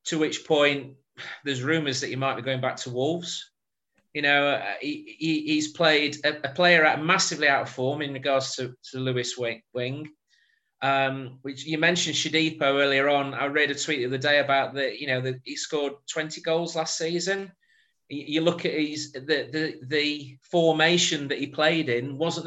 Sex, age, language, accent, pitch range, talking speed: male, 30-49, English, British, 140-185 Hz, 190 wpm